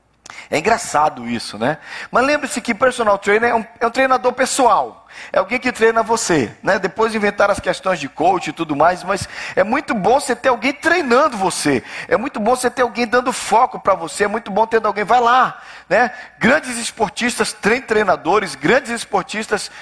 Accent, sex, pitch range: Brazilian, male, 190-245 Hz